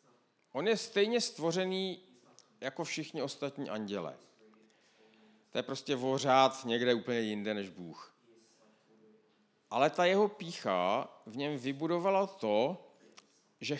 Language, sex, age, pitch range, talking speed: Czech, male, 50-69, 125-195 Hz, 115 wpm